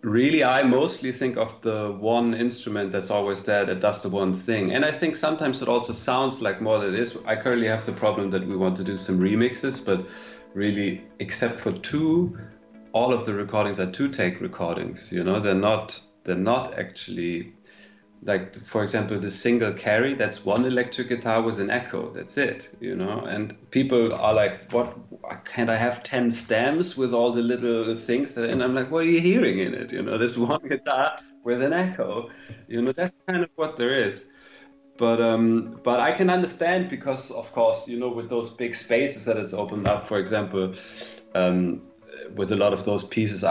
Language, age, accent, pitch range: English, 30-49, German, 95-120 Hz